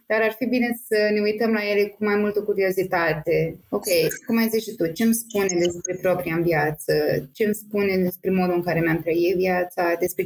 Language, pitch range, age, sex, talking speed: Romanian, 180-220 Hz, 20-39, female, 210 wpm